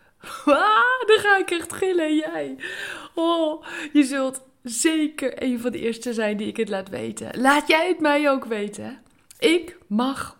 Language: Dutch